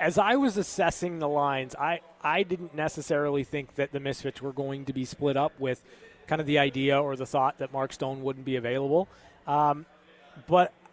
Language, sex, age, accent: English, male, 20-39, American